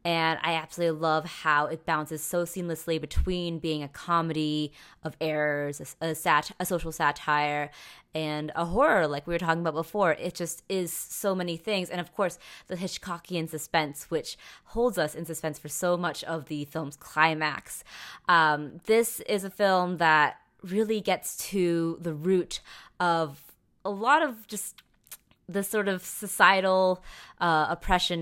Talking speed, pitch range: 155 wpm, 155-180 Hz